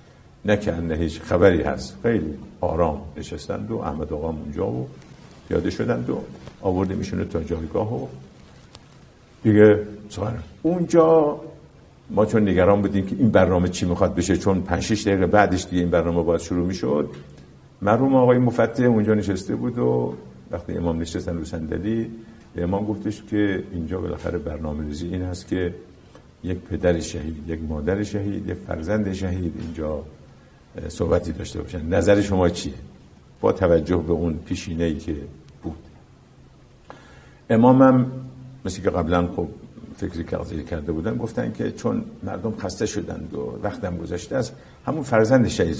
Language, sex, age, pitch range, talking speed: Persian, male, 50-69, 80-105 Hz, 145 wpm